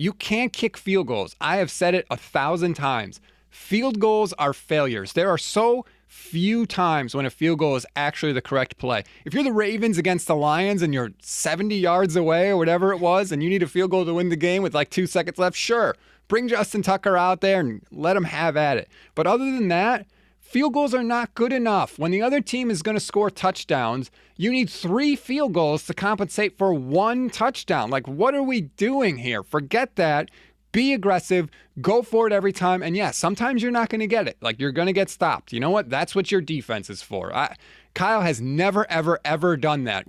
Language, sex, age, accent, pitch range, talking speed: English, male, 30-49, American, 150-210 Hz, 220 wpm